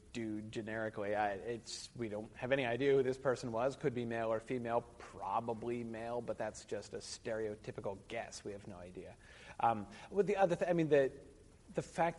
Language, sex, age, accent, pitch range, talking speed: English, male, 30-49, American, 110-150 Hz, 195 wpm